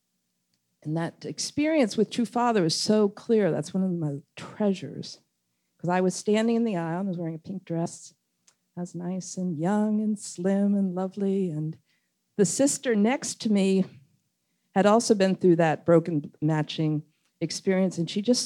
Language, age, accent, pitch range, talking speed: English, 50-69, American, 160-215 Hz, 175 wpm